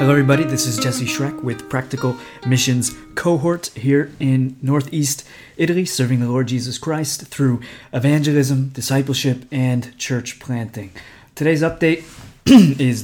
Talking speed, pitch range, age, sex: 130 wpm, 125-140 Hz, 30-49, male